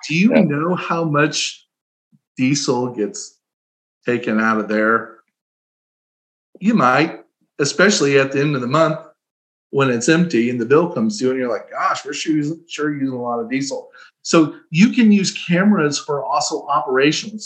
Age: 40-59